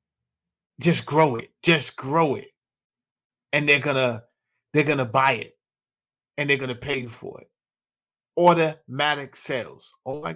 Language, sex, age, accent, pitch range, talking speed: English, male, 30-49, American, 125-165 Hz, 135 wpm